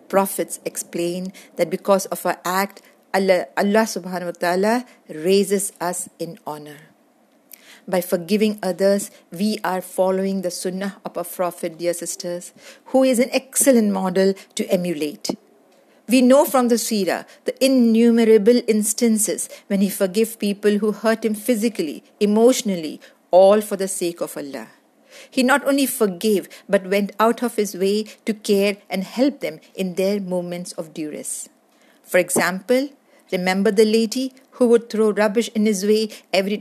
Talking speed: 150 wpm